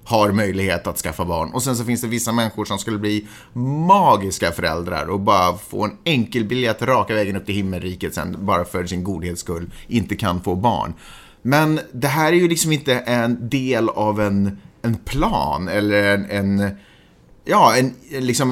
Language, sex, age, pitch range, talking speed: Swedish, male, 30-49, 100-150 Hz, 185 wpm